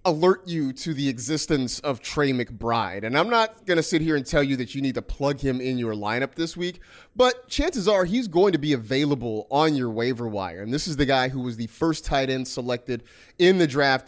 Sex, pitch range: male, 125-170 Hz